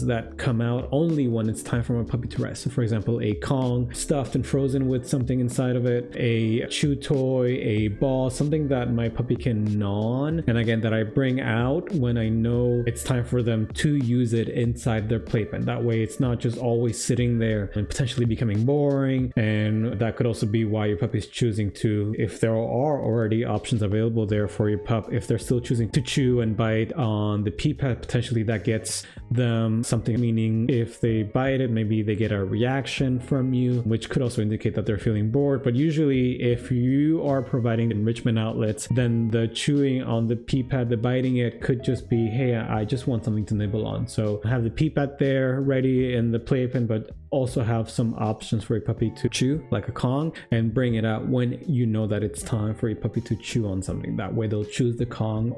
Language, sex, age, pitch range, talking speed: English, male, 20-39, 110-130 Hz, 215 wpm